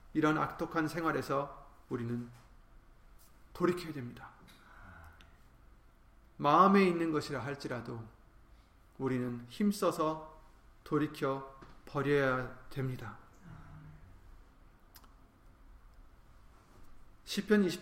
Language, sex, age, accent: Korean, male, 30-49, native